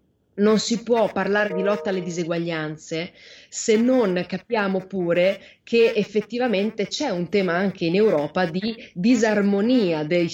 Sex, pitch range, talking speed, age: female, 175-220 Hz, 135 wpm, 30-49